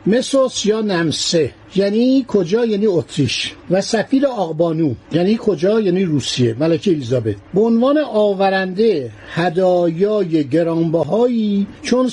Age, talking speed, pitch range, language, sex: 60-79, 110 wpm, 175-230 Hz, Persian, male